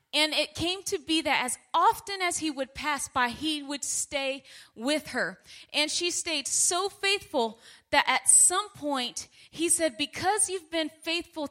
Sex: female